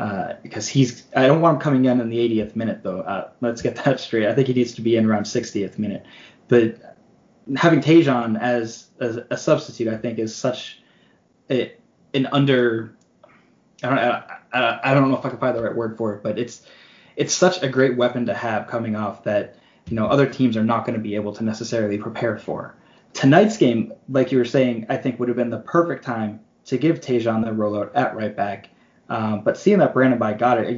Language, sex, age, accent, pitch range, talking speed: English, male, 20-39, American, 115-135 Hz, 225 wpm